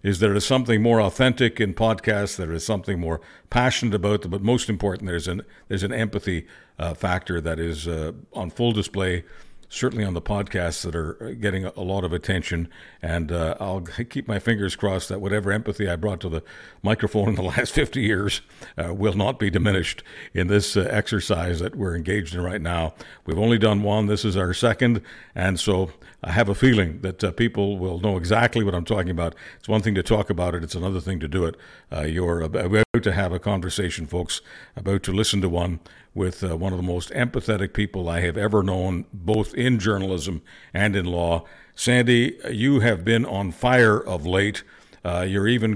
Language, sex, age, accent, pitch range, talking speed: English, male, 60-79, American, 90-110 Hz, 205 wpm